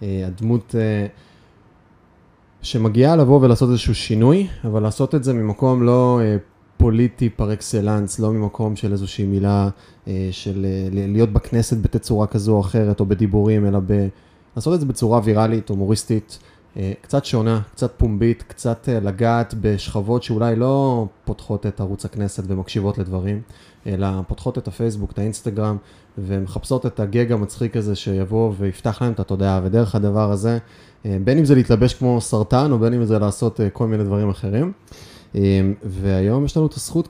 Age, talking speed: 20-39, 155 wpm